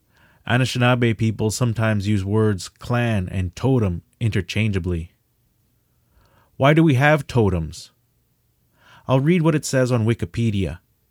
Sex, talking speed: male, 115 wpm